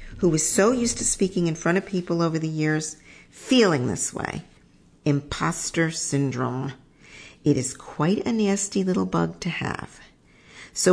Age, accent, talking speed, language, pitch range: 50-69, American, 155 wpm, English, 145-180 Hz